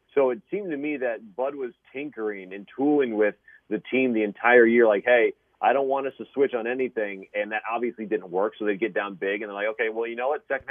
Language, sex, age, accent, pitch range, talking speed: English, male, 30-49, American, 105-135 Hz, 260 wpm